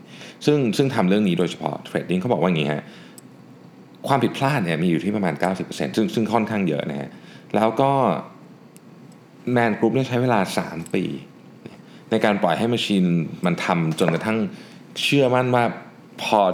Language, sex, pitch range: Thai, male, 85-120 Hz